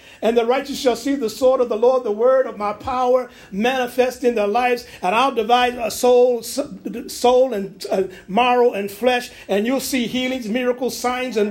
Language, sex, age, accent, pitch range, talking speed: English, male, 50-69, American, 225-265 Hz, 195 wpm